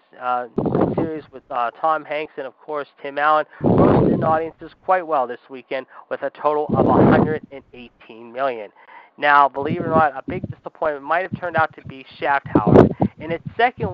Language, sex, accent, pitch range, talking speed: English, male, American, 140-170 Hz, 175 wpm